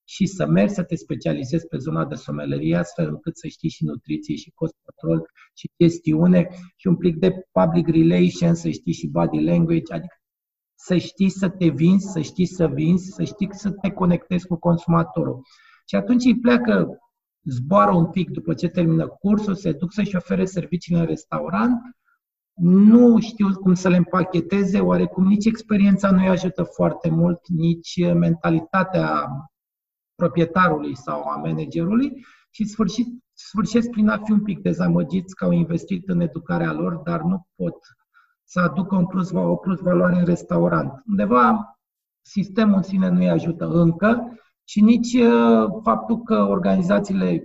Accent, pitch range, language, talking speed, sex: native, 170-200 Hz, Romanian, 160 wpm, male